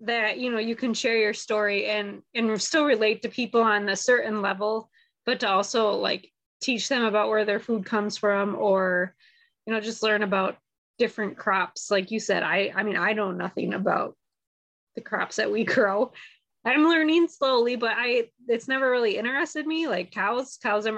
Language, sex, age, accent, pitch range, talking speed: English, female, 20-39, American, 210-240 Hz, 190 wpm